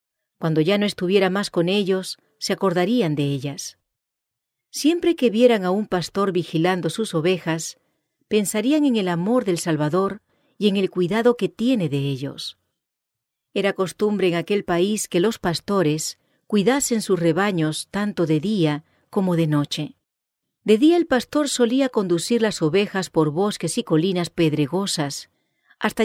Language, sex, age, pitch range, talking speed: English, female, 40-59, 160-220 Hz, 150 wpm